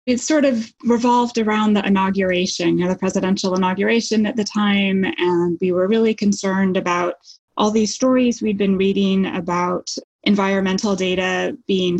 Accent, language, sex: American, English, female